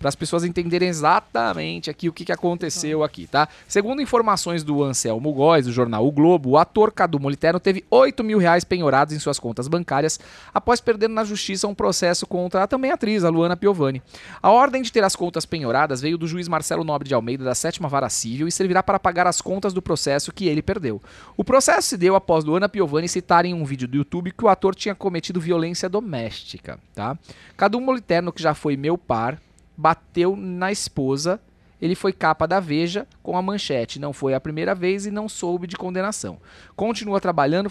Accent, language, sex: Brazilian, Portuguese, male